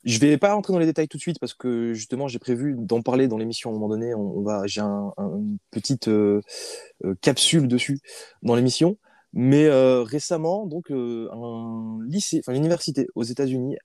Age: 20-39